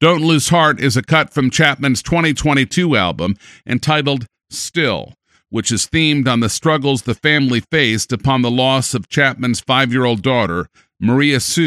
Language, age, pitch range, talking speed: English, 50-69, 120-155 Hz, 165 wpm